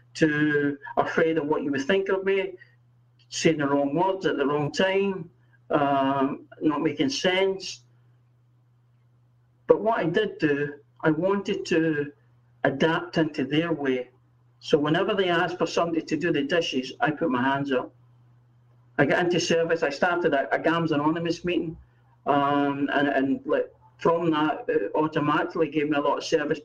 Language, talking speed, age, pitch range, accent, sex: English, 160 wpm, 60-79, 125-170 Hz, British, male